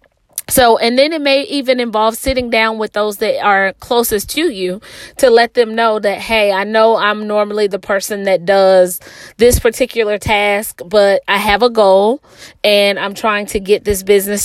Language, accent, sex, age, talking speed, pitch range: English, American, female, 30-49, 185 wpm, 205-240 Hz